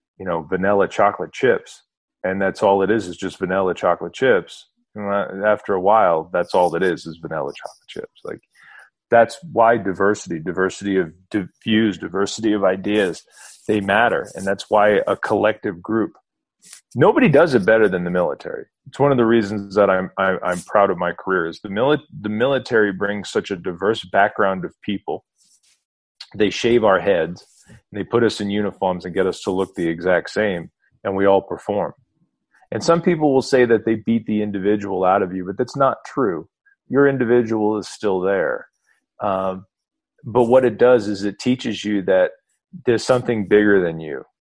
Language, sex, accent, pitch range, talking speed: English, male, American, 95-120 Hz, 180 wpm